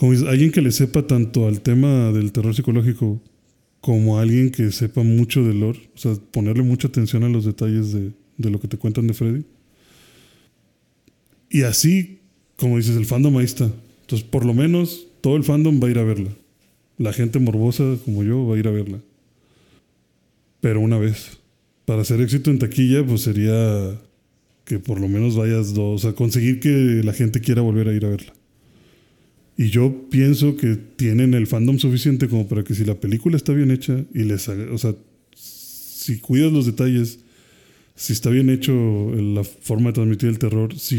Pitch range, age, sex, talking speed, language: 110-130 Hz, 20-39, male, 185 wpm, Spanish